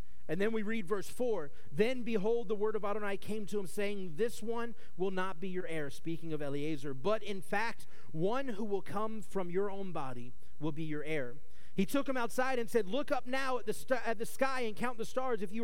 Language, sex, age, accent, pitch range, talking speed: English, male, 30-49, American, 155-220 Hz, 240 wpm